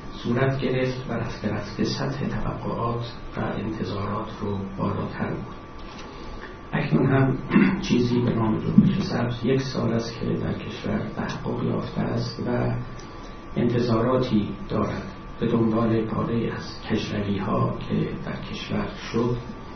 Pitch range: 105-125 Hz